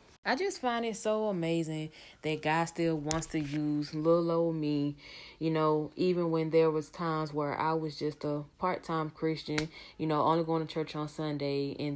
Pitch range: 150-175 Hz